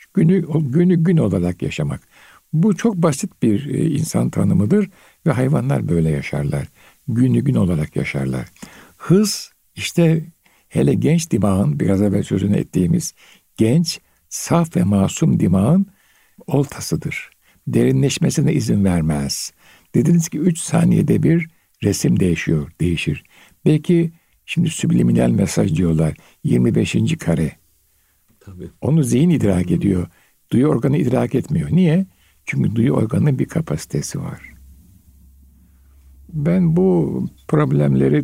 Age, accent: 60-79, native